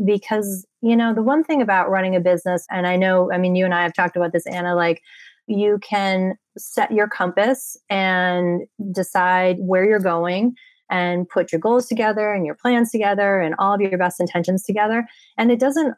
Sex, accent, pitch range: female, American, 170-205 Hz